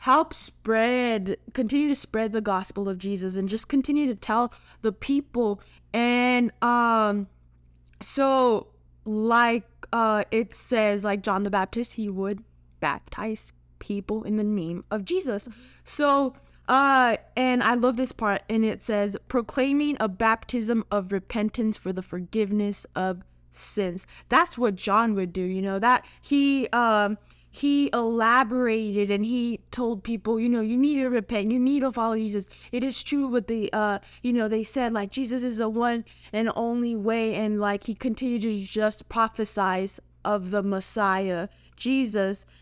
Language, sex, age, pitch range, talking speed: English, female, 10-29, 205-245 Hz, 160 wpm